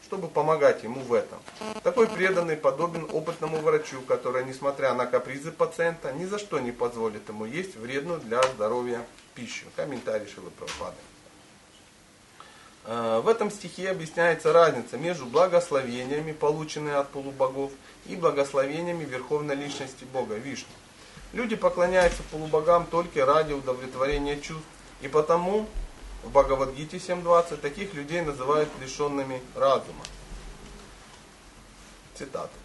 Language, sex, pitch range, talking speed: Russian, male, 135-175 Hz, 115 wpm